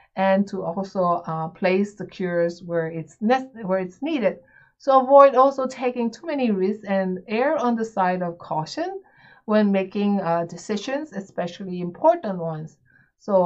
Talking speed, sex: 155 wpm, female